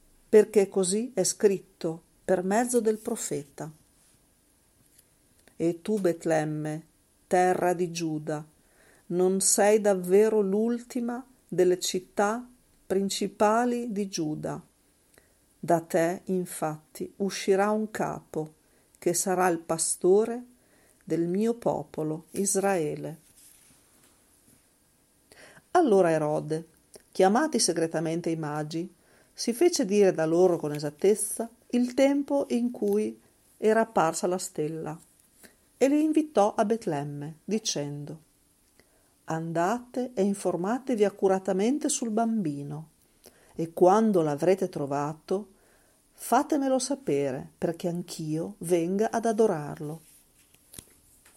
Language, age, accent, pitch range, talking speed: Italian, 50-69, native, 160-220 Hz, 95 wpm